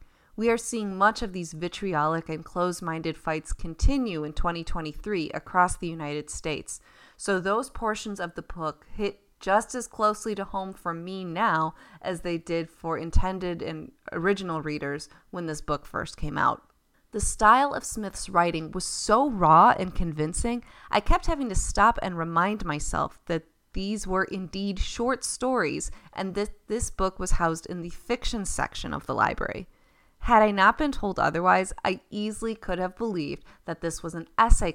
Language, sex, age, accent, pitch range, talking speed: English, female, 30-49, American, 165-205 Hz, 170 wpm